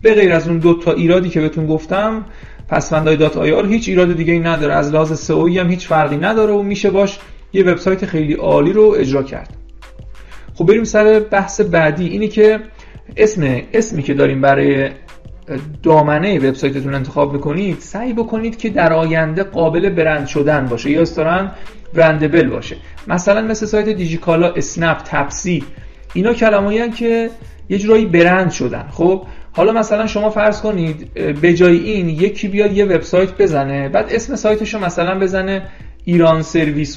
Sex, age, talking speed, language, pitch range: male, 40-59, 160 wpm, Persian, 155-200 Hz